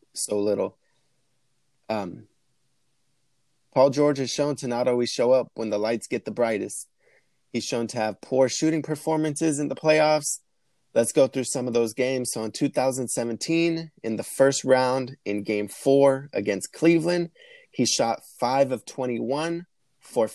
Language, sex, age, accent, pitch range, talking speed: English, male, 20-39, American, 115-155 Hz, 155 wpm